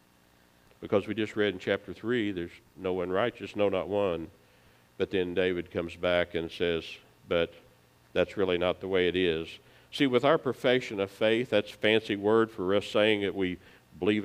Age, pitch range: 50-69, 80-115 Hz